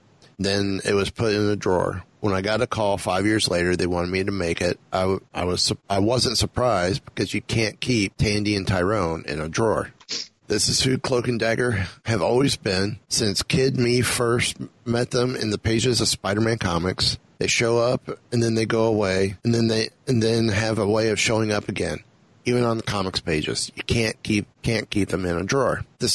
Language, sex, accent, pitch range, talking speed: English, male, American, 95-115 Hz, 215 wpm